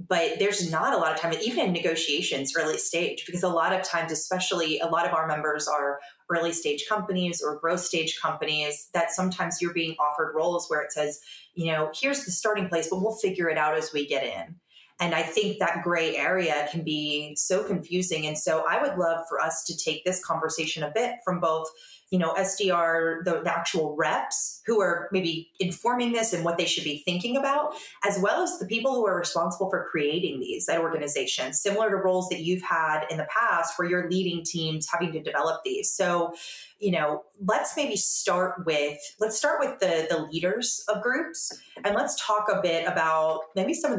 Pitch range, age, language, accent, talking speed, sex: 160-190 Hz, 30-49, English, American, 205 wpm, female